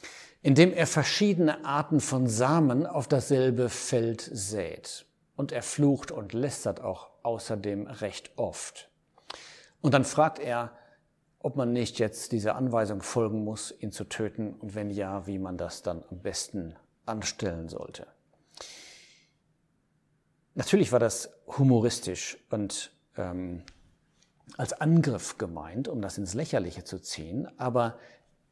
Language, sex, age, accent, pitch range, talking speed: German, male, 60-79, German, 105-140 Hz, 130 wpm